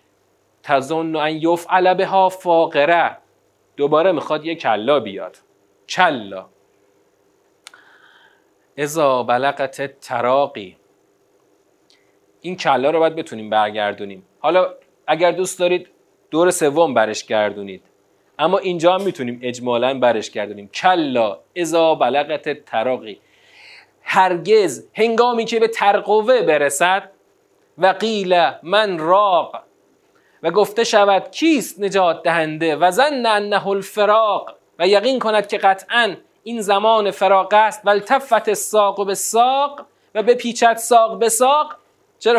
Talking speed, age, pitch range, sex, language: 110 wpm, 40-59, 155-215 Hz, male, Persian